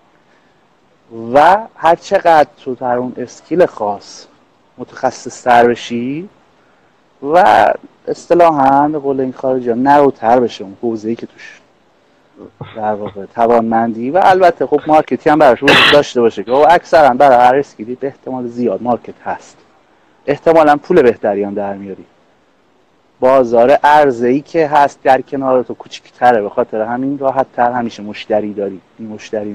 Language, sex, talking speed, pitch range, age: Persian, male, 140 wpm, 115-140 Hz, 30-49